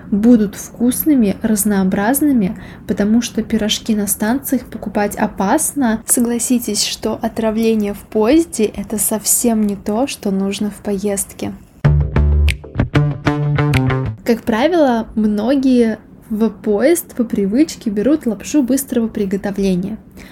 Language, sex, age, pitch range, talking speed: Russian, female, 20-39, 205-240 Hz, 100 wpm